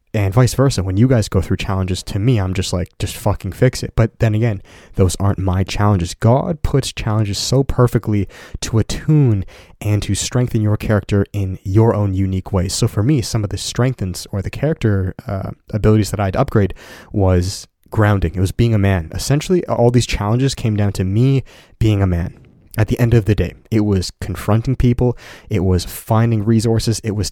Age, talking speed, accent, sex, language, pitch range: 20-39, 200 wpm, American, male, English, 95-120 Hz